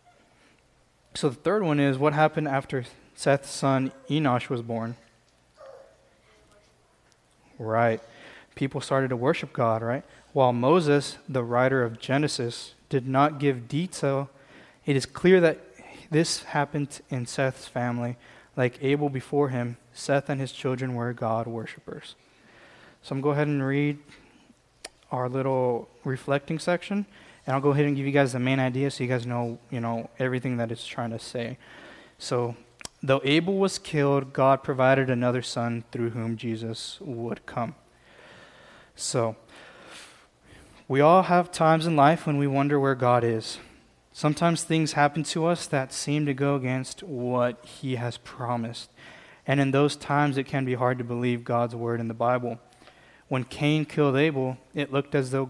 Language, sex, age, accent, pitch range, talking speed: English, male, 20-39, American, 120-145 Hz, 160 wpm